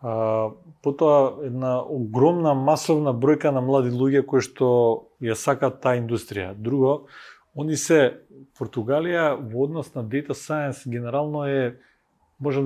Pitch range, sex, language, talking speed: 120-145 Hz, male, English, 125 wpm